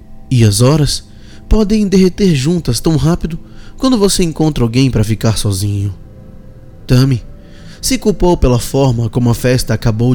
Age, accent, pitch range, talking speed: 20-39, Brazilian, 115-155 Hz, 140 wpm